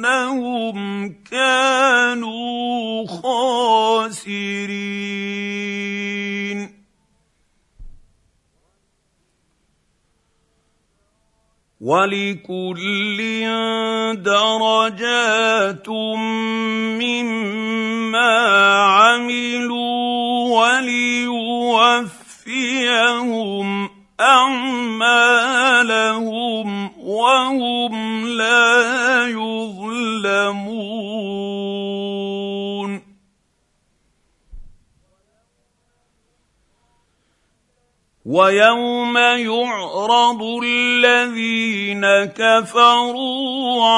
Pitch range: 200-240 Hz